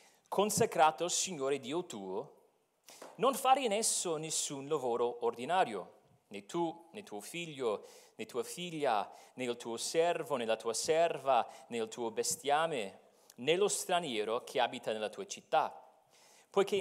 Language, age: Italian, 40-59